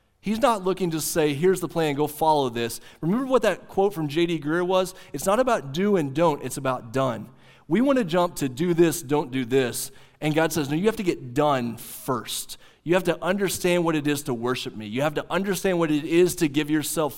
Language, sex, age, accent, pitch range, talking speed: English, male, 30-49, American, 135-185 Hz, 240 wpm